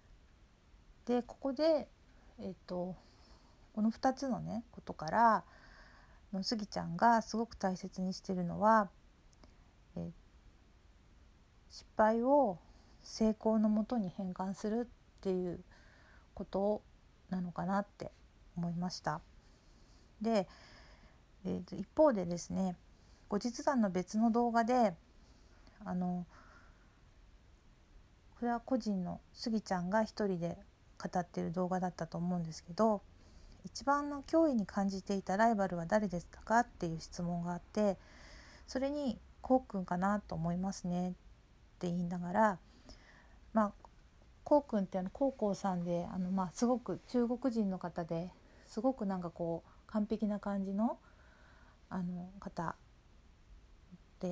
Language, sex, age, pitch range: Japanese, female, 50-69, 175-220 Hz